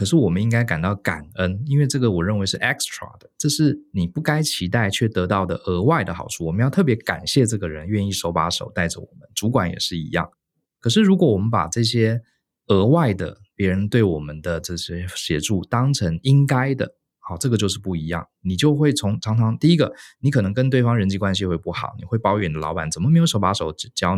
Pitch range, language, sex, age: 90-130 Hz, Chinese, male, 20-39